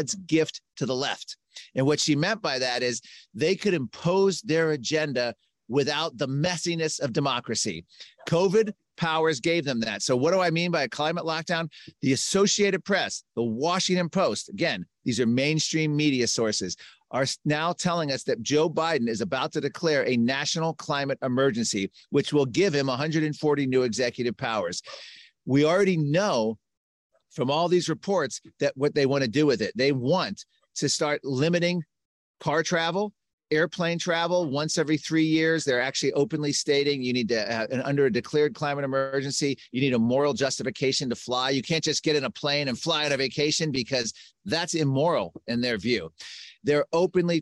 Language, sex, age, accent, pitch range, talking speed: English, male, 40-59, American, 135-165 Hz, 175 wpm